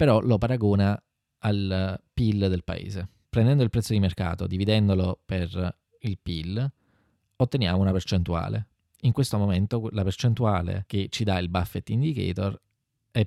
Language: Italian